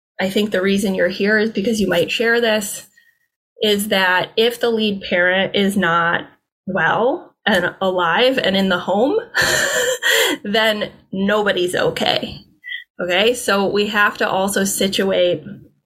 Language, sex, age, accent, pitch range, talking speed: English, female, 20-39, American, 185-230 Hz, 140 wpm